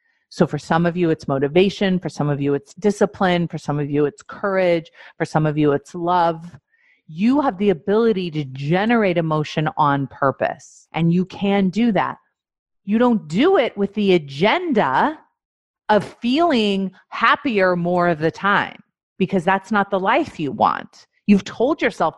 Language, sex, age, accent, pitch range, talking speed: English, female, 40-59, American, 170-240 Hz, 170 wpm